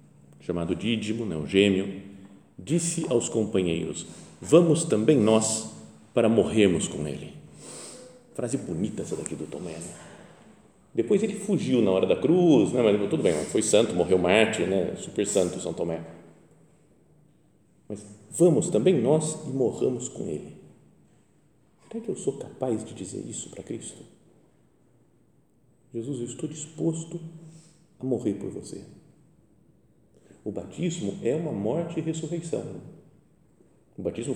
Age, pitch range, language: 40-59, 100-160 Hz, Portuguese